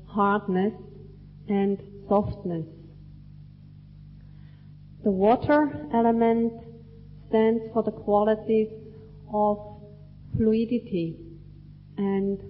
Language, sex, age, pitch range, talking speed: English, female, 30-49, 150-210 Hz, 60 wpm